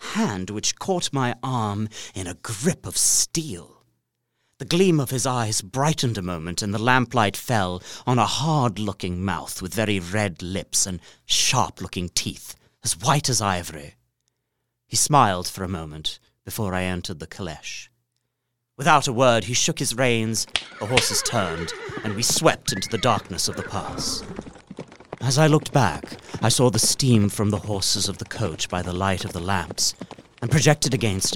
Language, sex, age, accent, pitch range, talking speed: English, male, 30-49, British, 95-125 Hz, 170 wpm